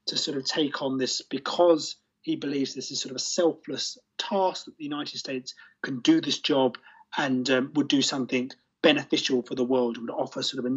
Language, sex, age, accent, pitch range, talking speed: English, male, 30-49, British, 125-160 Hz, 215 wpm